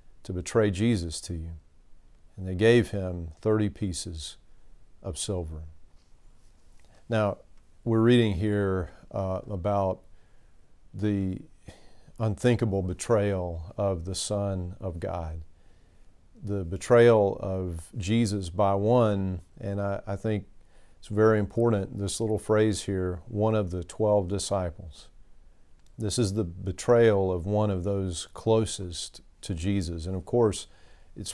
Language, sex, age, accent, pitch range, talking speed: English, male, 40-59, American, 90-110 Hz, 125 wpm